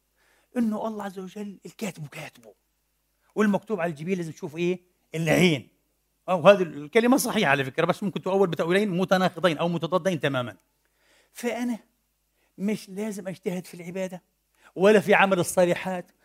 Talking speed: 135 wpm